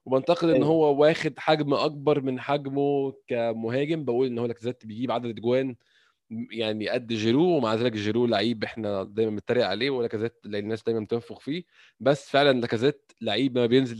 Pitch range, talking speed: 115-150 Hz, 165 wpm